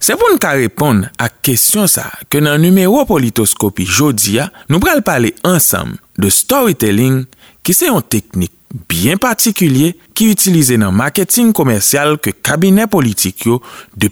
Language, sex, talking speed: French, male, 140 wpm